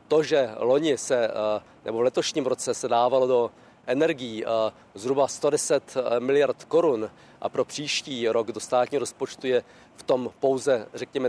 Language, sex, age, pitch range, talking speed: Czech, male, 40-59, 125-145 Hz, 140 wpm